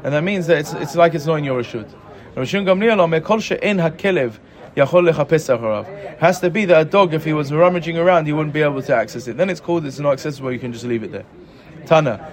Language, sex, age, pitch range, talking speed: English, male, 30-49, 130-175 Hz, 220 wpm